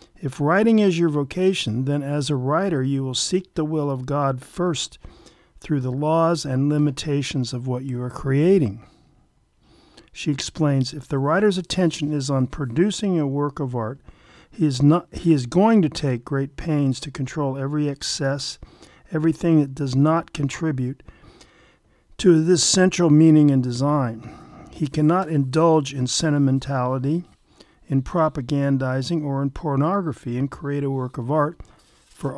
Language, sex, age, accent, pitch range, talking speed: English, male, 50-69, American, 135-160 Hz, 150 wpm